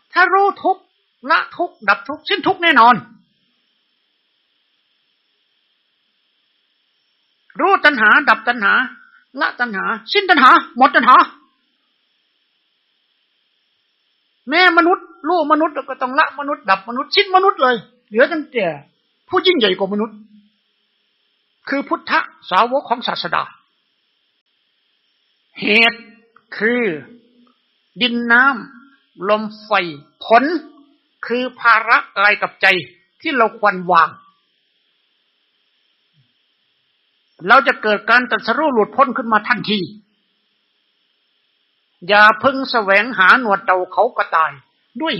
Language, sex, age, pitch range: Thai, male, 60-79, 205-295 Hz